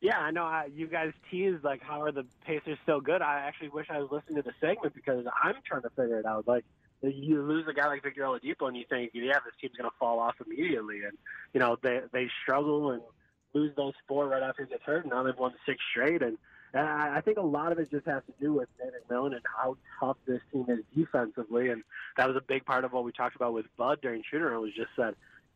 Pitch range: 125-150 Hz